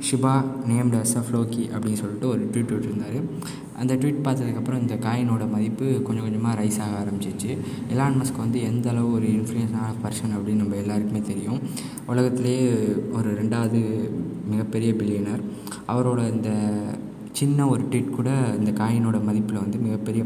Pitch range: 105-125 Hz